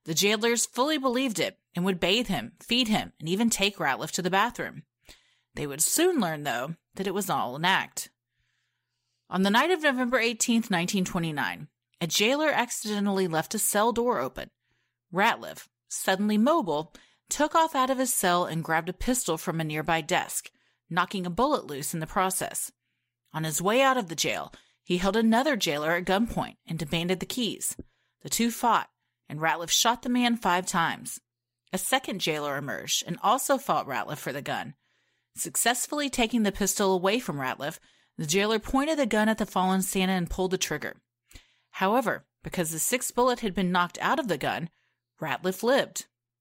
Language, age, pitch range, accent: English, 30-49, 165-235 Hz, American